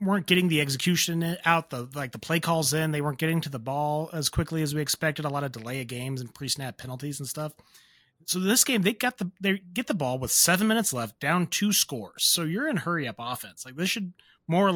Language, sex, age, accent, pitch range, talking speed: English, male, 30-49, American, 135-175 Hz, 250 wpm